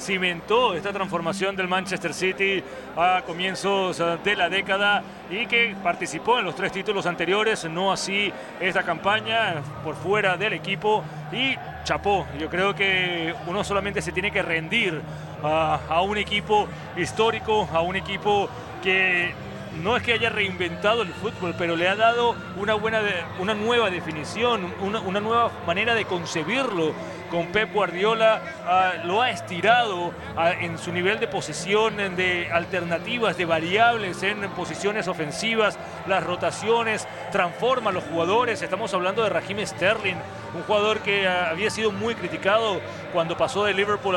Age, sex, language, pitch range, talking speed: 30-49, male, Spanish, 170-210 Hz, 150 wpm